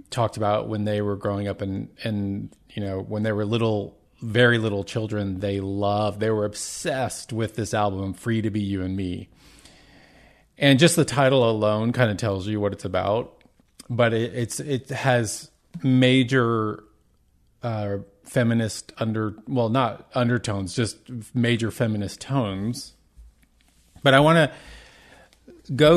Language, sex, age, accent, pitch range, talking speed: English, male, 30-49, American, 105-130 Hz, 150 wpm